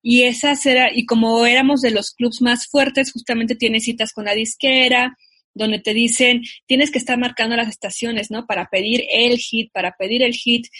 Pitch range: 215-255 Hz